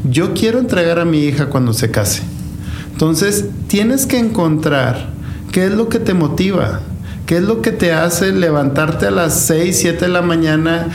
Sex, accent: male, Mexican